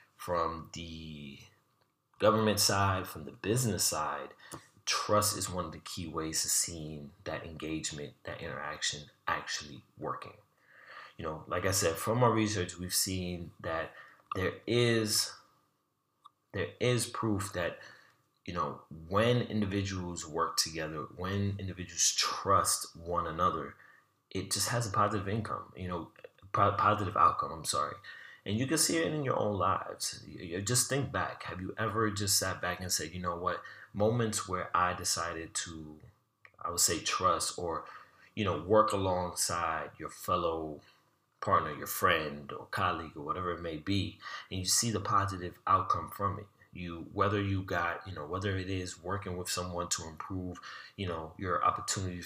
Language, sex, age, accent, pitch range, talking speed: English, male, 30-49, American, 85-105 Hz, 160 wpm